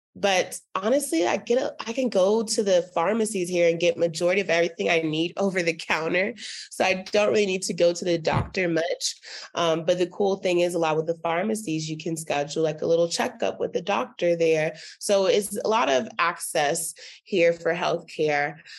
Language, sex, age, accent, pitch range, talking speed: English, female, 20-39, American, 165-220 Hz, 210 wpm